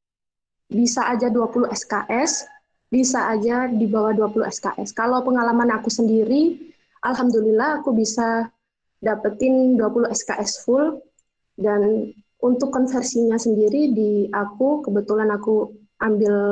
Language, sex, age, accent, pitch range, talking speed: Indonesian, female, 20-39, native, 220-260 Hz, 110 wpm